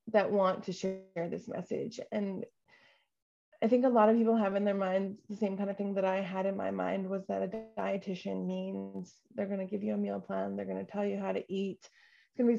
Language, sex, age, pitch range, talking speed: English, female, 20-39, 200-235 Hz, 240 wpm